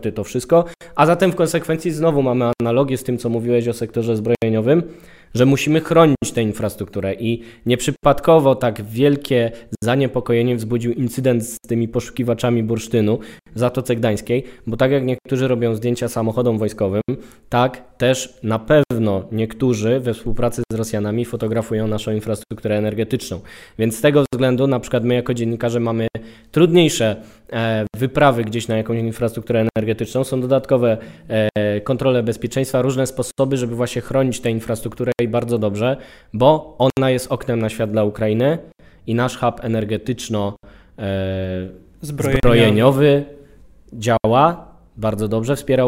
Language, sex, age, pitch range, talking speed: Polish, male, 20-39, 110-130 Hz, 135 wpm